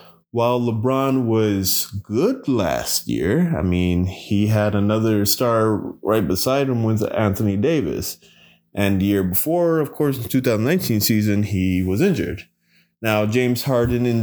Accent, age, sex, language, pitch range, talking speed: American, 20-39, male, English, 100-130 Hz, 150 wpm